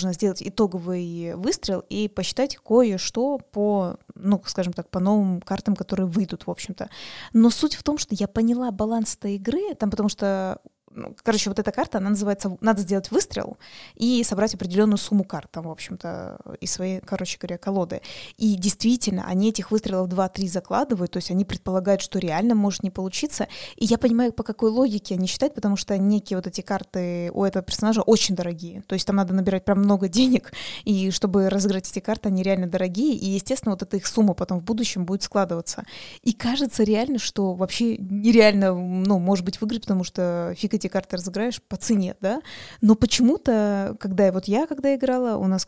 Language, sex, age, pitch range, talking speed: Russian, female, 20-39, 190-225 Hz, 185 wpm